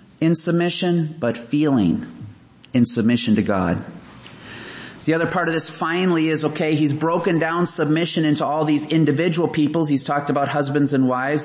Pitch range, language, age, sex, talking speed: 125-160 Hz, English, 30-49, male, 160 wpm